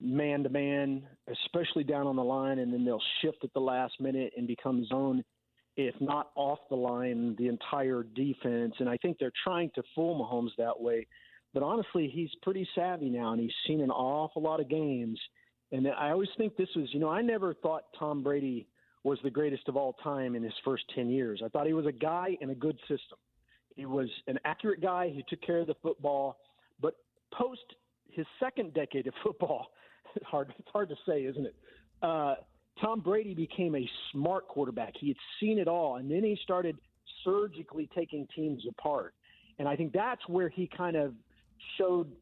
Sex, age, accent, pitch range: male, 40-59, American, 135-180 Hz